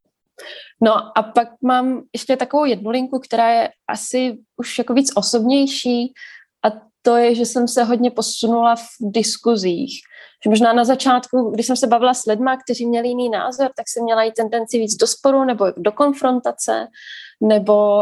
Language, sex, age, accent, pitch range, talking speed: Czech, female, 20-39, native, 225-245 Hz, 165 wpm